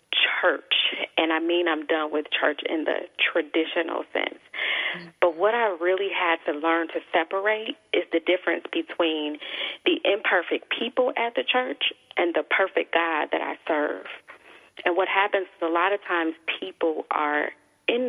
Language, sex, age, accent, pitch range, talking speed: English, female, 30-49, American, 160-195 Hz, 165 wpm